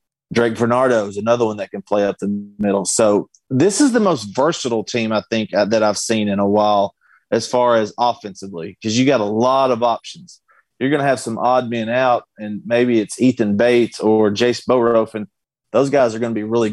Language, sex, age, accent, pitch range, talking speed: English, male, 30-49, American, 110-125 Hz, 220 wpm